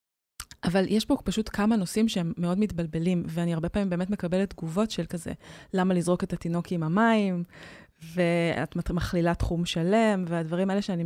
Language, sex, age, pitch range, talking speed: Hebrew, female, 20-39, 170-205 Hz, 165 wpm